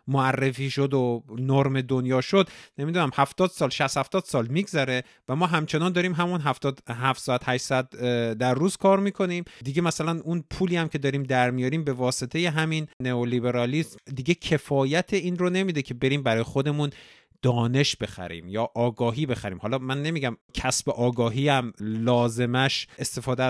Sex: male